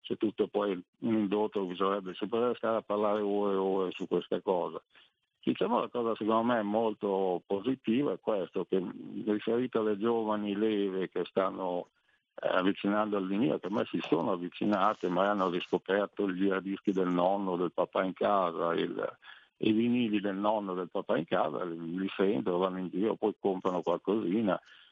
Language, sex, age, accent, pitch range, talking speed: Italian, male, 50-69, native, 90-105 Hz, 170 wpm